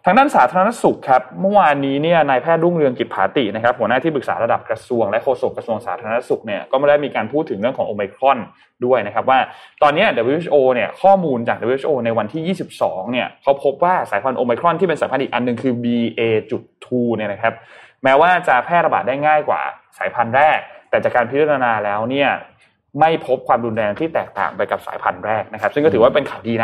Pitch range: 115-160 Hz